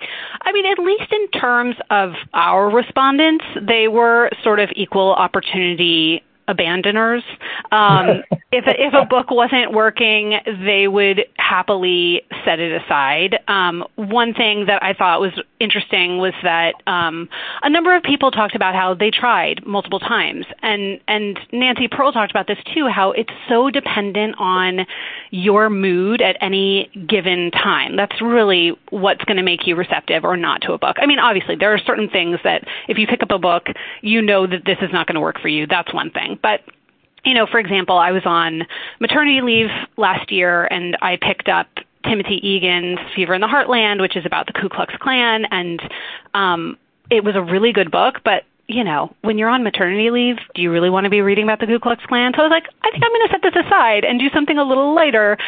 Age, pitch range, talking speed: 30-49, 190-245 Hz, 200 wpm